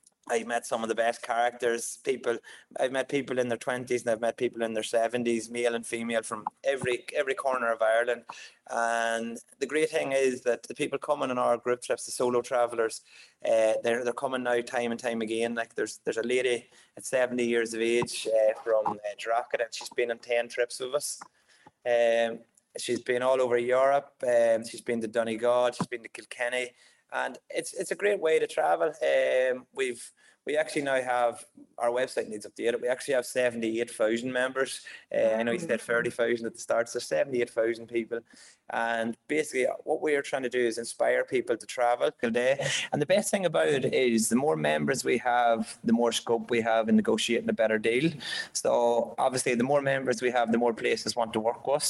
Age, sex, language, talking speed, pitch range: 20-39, male, English, 205 wpm, 115-130 Hz